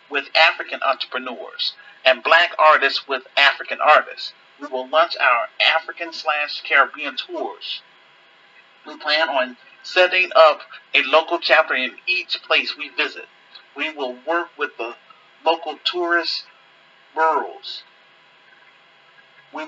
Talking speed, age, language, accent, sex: 115 wpm, 40-59, English, American, male